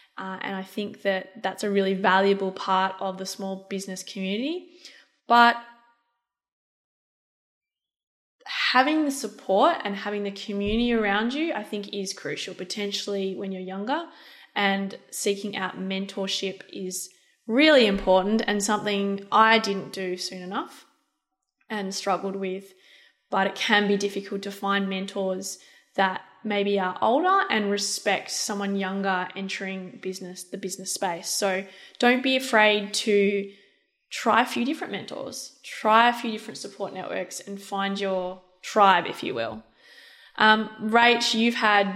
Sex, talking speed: female, 140 wpm